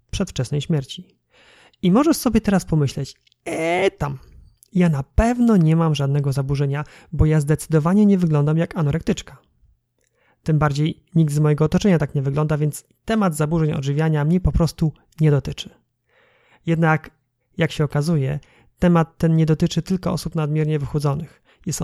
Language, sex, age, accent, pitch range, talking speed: Polish, male, 30-49, native, 145-180 Hz, 150 wpm